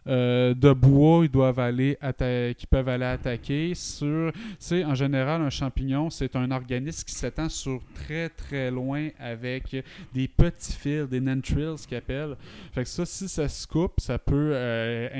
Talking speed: 145 wpm